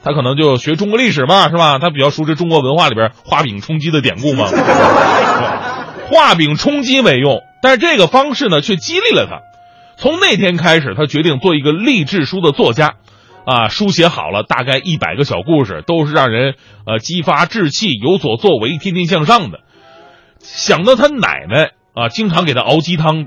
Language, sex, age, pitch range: Chinese, male, 30-49, 130-190 Hz